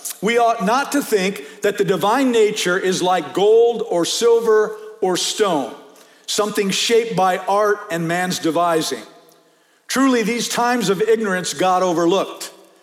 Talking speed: 140 wpm